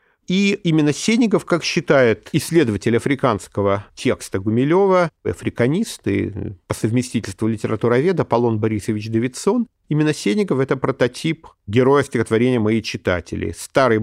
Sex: male